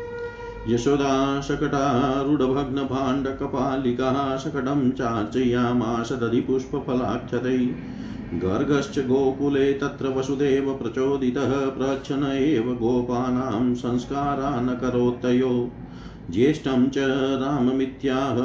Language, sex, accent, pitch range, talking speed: Hindi, male, native, 125-135 Hz, 60 wpm